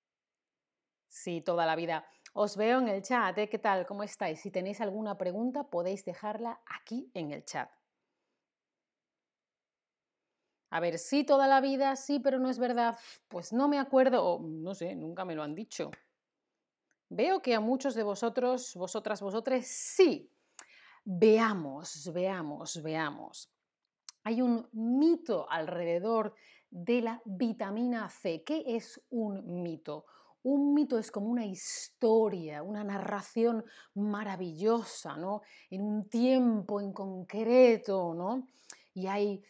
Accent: Spanish